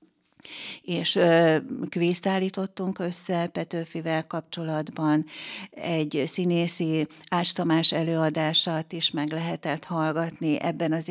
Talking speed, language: 85 wpm, Hungarian